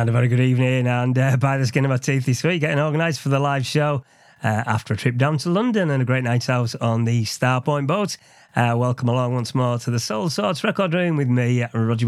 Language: English